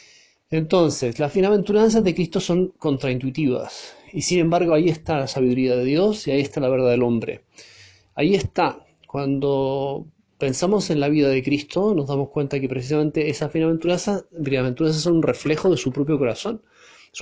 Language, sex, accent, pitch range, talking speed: Spanish, male, Argentinian, 140-175 Hz, 165 wpm